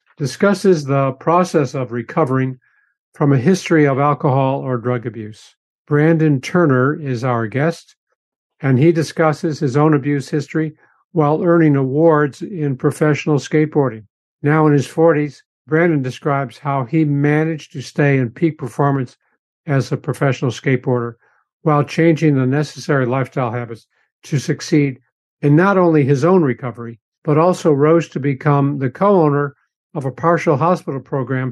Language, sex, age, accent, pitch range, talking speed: English, male, 50-69, American, 130-155 Hz, 145 wpm